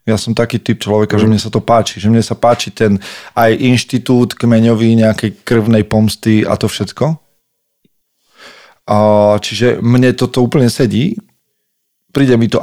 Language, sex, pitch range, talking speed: Slovak, male, 105-125 Hz, 150 wpm